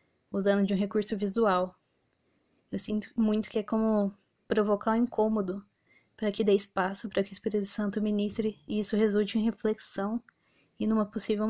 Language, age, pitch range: Portuguese, 10-29, 195-215 Hz